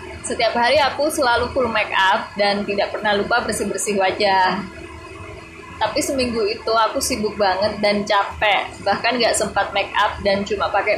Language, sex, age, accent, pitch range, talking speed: Indonesian, female, 20-39, native, 200-230 Hz, 165 wpm